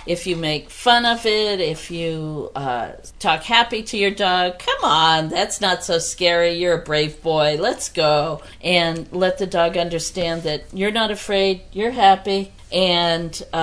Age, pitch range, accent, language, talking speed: 50-69, 165-195 Hz, American, English, 165 wpm